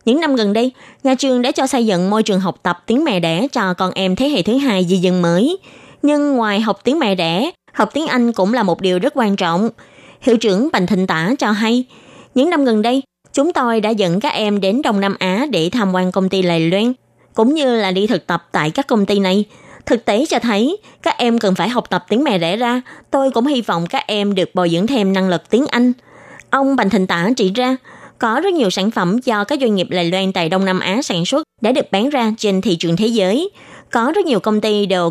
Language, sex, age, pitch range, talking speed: Vietnamese, female, 20-39, 185-260 Hz, 255 wpm